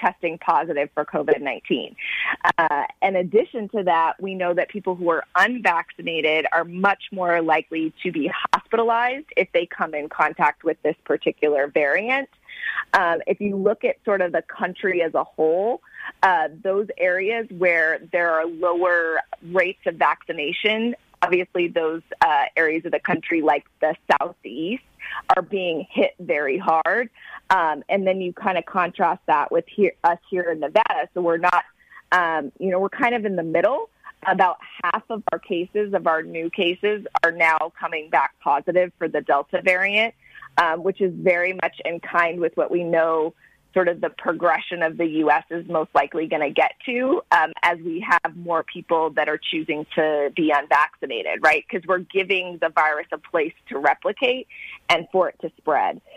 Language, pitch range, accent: English, 160-195 Hz, American